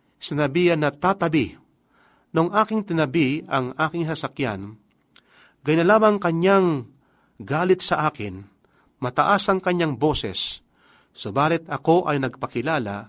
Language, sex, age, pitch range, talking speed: Filipino, male, 40-59, 130-175 Hz, 110 wpm